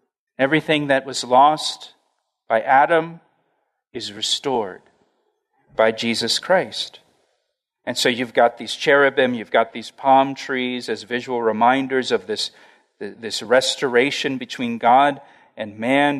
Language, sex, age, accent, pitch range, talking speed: English, male, 40-59, American, 125-160 Hz, 120 wpm